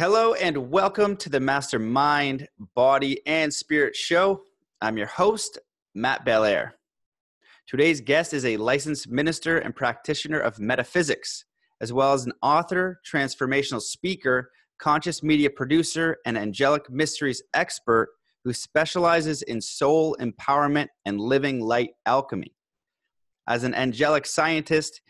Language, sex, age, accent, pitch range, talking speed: English, male, 30-49, American, 130-160 Hz, 125 wpm